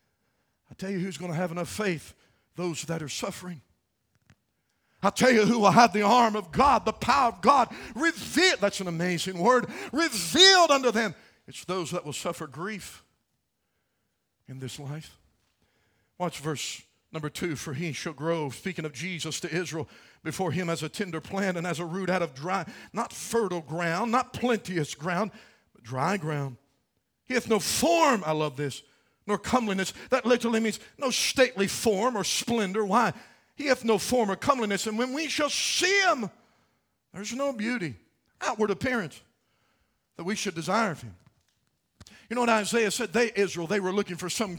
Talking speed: 175 wpm